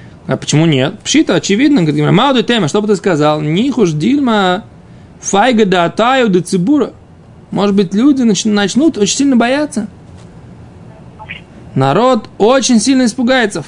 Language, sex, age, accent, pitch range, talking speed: Russian, male, 20-39, native, 180-245 Hz, 125 wpm